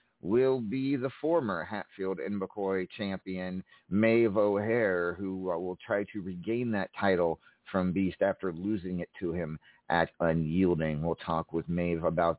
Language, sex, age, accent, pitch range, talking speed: English, male, 40-59, American, 90-115 Hz, 155 wpm